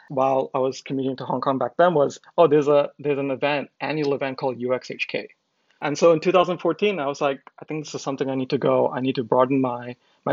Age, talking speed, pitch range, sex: 20-39, 245 wpm, 130-155 Hz, male